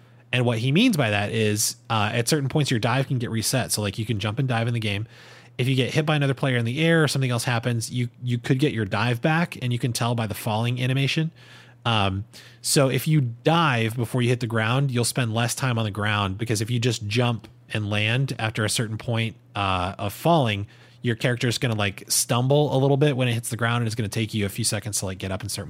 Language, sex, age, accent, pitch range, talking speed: English, male, 30-49, American, 110-130 Hz, 270 wpm